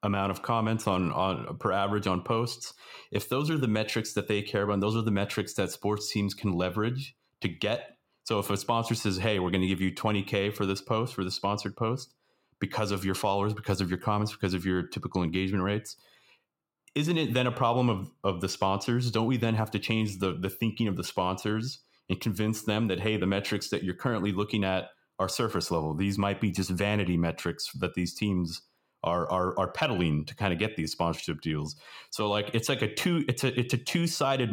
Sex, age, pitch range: male, 30-49, 95-115 Hz